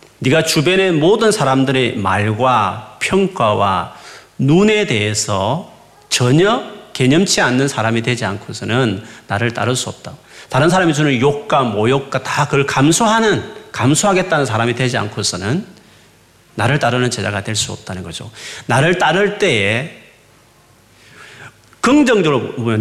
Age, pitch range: 40-59, 115-175 Hz